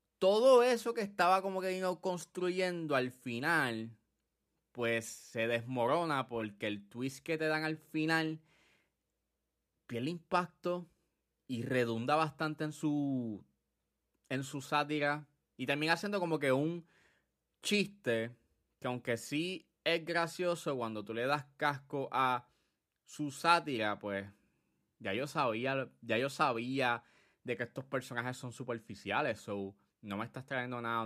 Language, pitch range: Spanish, 115-165 Hz